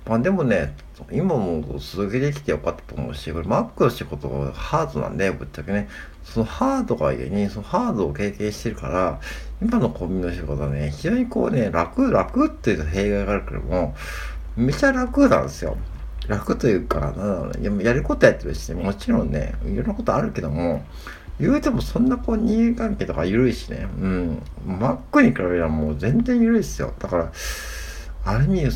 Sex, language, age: male, Japanese, 60-79